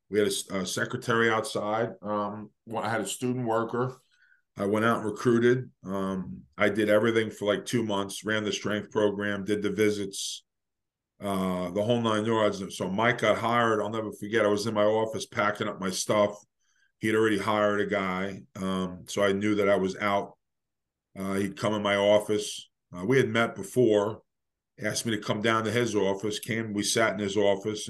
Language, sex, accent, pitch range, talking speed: English, male, American, 100-110 Hz, 195 wpm